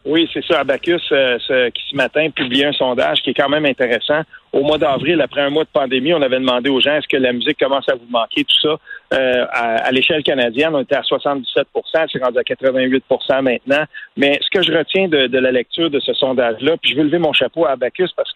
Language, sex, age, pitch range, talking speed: French, male, 50-69, 135-170 Hz, 250 wpm